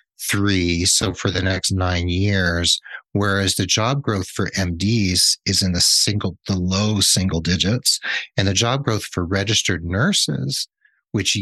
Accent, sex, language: American, male, English